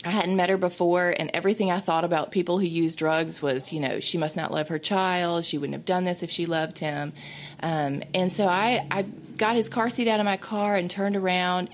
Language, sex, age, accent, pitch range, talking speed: English, female, 30-49, American, 155-195 Hz, 245 wpm